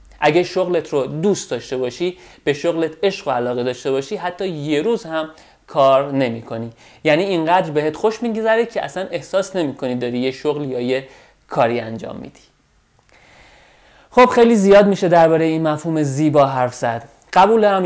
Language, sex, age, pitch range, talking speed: Persian, male, 30-49, 130-175 Hz, 170 wpm